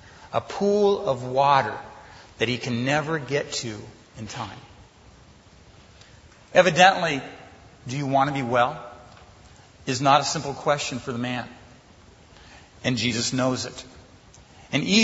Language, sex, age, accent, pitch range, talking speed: English, male, 50-69, American, 120-175 Hz, 130 wpm